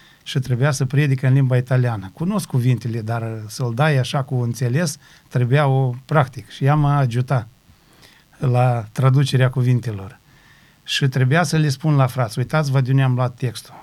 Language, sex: Romanian, male